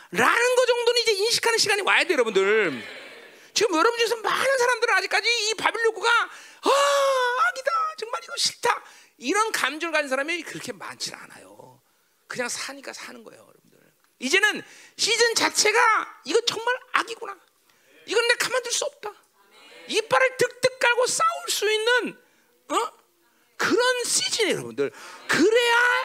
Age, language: 40-59, Korean